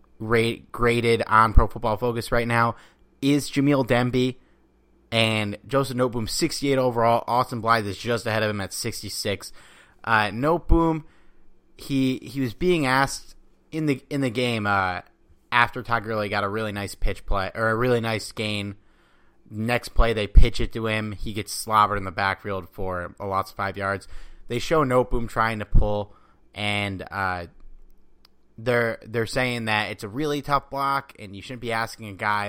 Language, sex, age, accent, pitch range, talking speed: English, male, 30-49, American, 100-130 Hz, 175 wpm